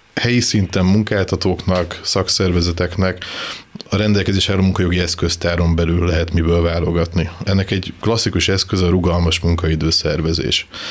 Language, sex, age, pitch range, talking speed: Hungarian, male, 20-39, 85-95 Hz, 110 wpm